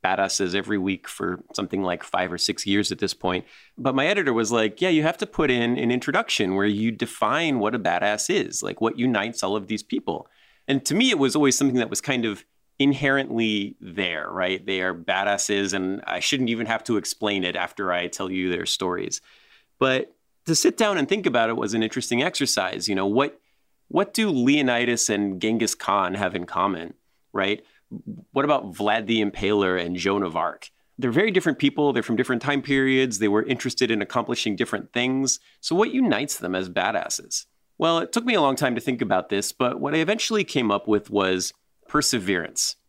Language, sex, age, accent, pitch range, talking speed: English, male, 30-49, American, 100-135 Hz, 205 wpm